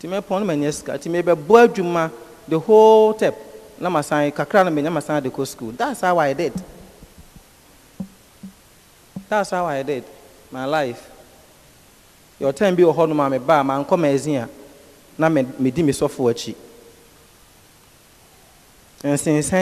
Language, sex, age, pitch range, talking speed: English, male, 40-59, 135-180 Hz, 65 wpm